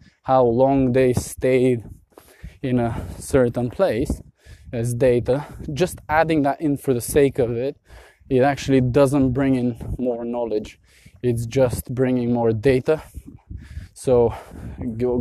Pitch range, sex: 110-125 Hz, male